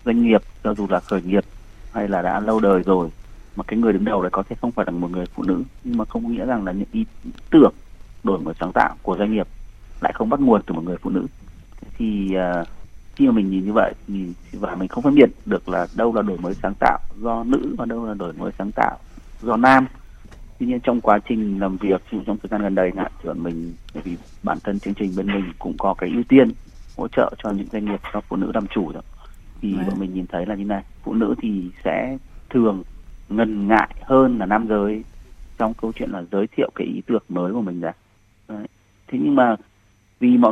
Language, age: Vietnamese, 30-49